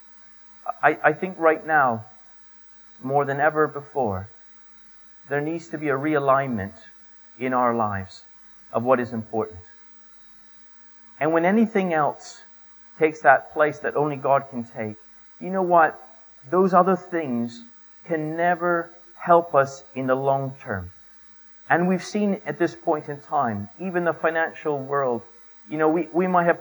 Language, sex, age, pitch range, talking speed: English, male, 40-59, 140-180 Hz, 150 wpm